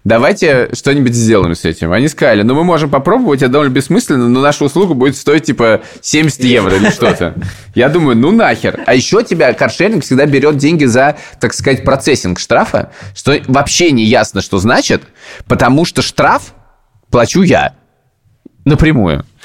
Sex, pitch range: male, 105-145 Hz